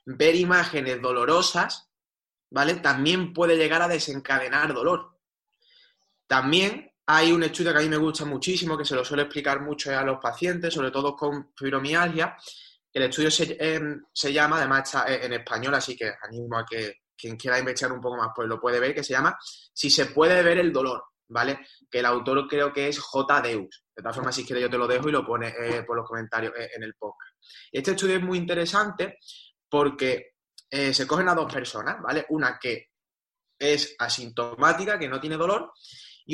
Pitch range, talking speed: 125-160 Hz, 195 wpm